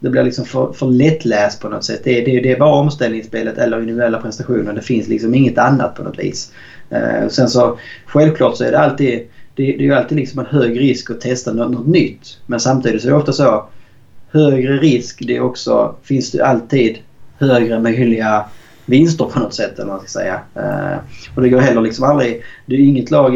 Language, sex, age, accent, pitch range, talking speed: Swedish, male, 30-49, Norwegian, 115-130 Hz, 220 wpm